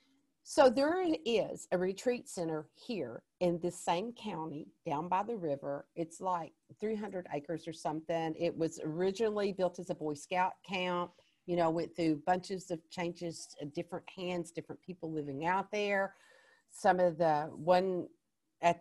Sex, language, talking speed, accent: female, English, 155 wpm, American